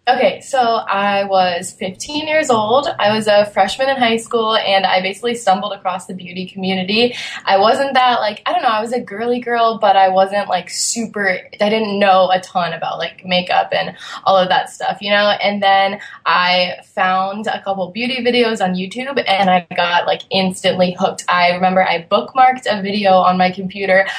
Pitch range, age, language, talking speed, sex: 185-230 Hz, 20-39, English, 195 wpm, female